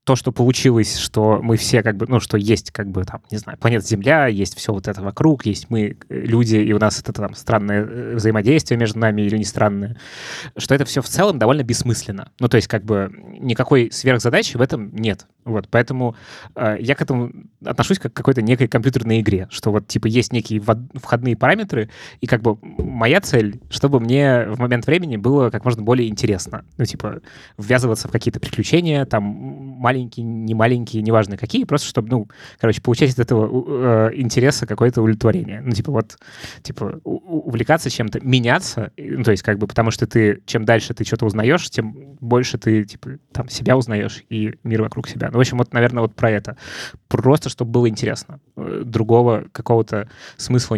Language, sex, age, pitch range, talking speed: Russian, male, 20-39, 110-130 Hz, 185 wpm